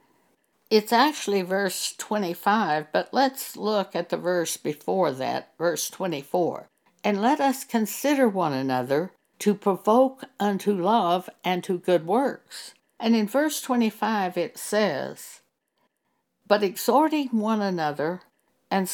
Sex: female